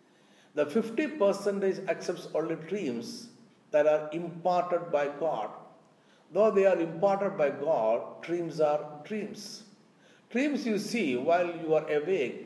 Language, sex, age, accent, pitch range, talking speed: Malayalam, male, 60-79, native, 150-215 Hz, 125 wpm